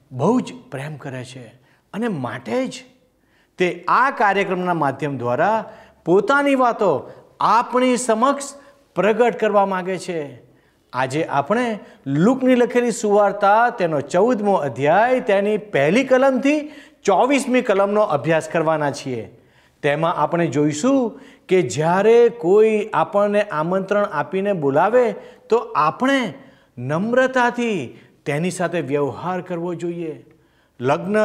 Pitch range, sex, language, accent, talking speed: 145-235 Hz, male, Gujarati, native, 105 wpm